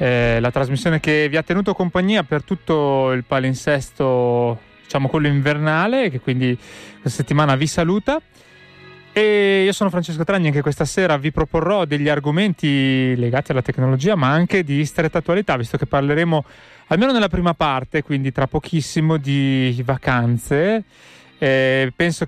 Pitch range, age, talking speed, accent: 130-170 Hz, 30-49, 150 wpm, native